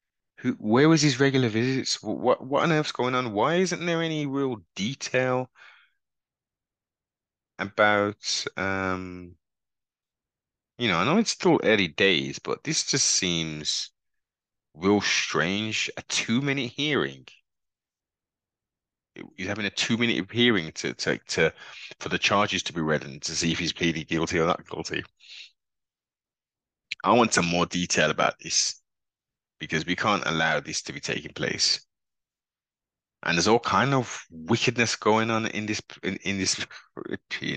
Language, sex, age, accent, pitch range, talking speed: English, male, 30-49, British, 90-135 Hz, 150 wpm